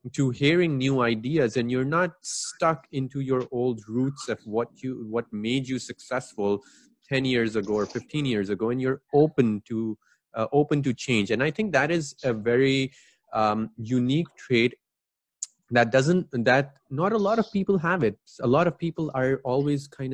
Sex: male